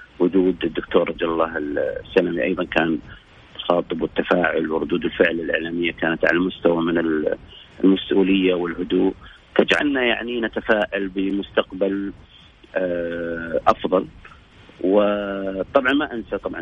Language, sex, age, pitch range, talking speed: Arabic, male, 40-59, 90-100 Hz, 95 wpm